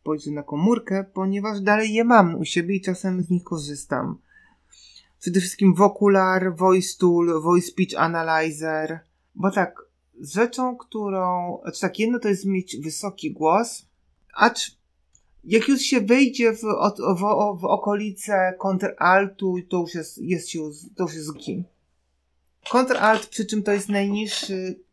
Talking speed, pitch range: 135 wpm, 145-195 Hz